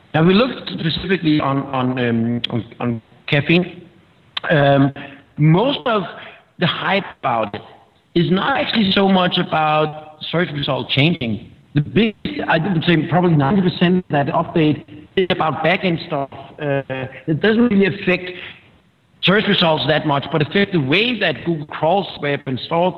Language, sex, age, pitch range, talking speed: English, male, 60-79, 135-175 Hz, 150 wpm